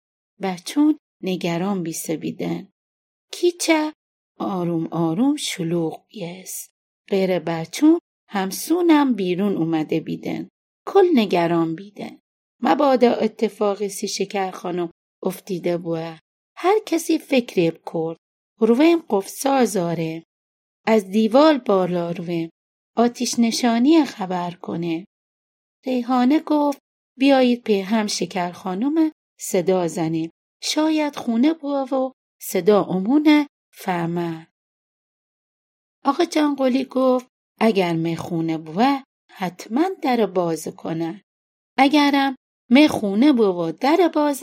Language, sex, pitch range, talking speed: Persian, female, 175-270 Hz, 100 wpm